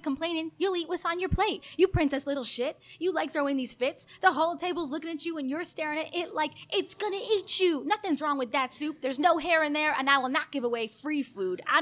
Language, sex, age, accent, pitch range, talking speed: English, female, 10-29, American, 285-345 Hz, 260 wpm